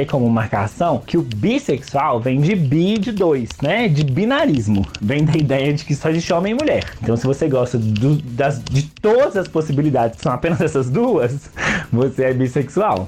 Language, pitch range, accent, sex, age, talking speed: Portuguese, 130-170 Hz, Brazilian, male, 20-39, 180 wpm